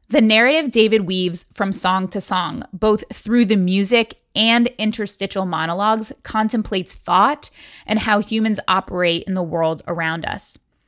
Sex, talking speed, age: female, 145 wpm, 20-39